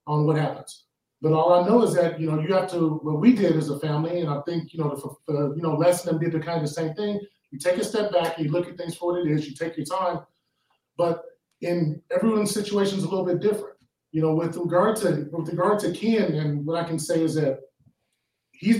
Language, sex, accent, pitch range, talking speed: English, male, American, 155-180 Hz, 260 wpm